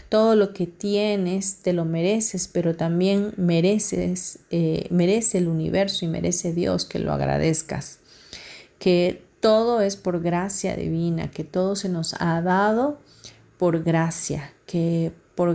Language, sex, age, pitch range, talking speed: Spanish, female, 40-59, 170-205 Hz, 135 wpm